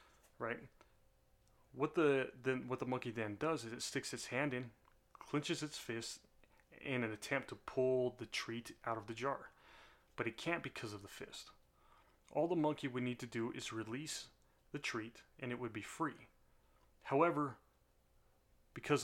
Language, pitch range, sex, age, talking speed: English, 115-135 Hz, male, 30-49, 170 wpm